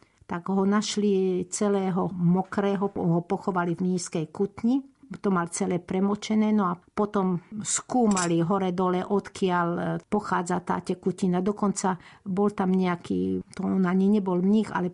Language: Slovak